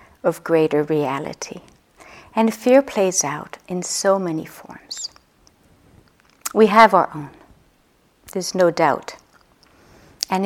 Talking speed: 110 wpm